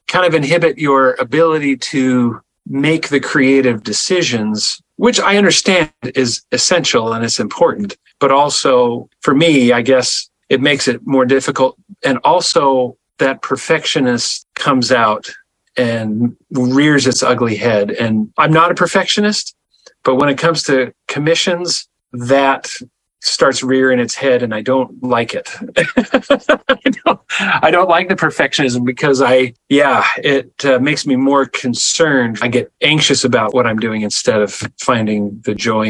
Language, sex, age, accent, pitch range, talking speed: English, male, 40-59, American, 125-165 Hz, 145 wpm